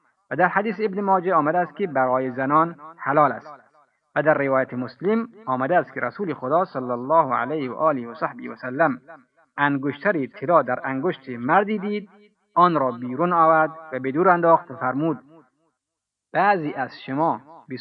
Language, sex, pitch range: Persian, male, 130-170 Hz